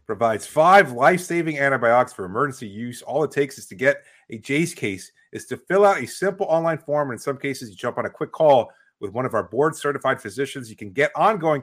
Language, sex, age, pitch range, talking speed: English, male, 30-49, 120-155 Hz, 220 wpm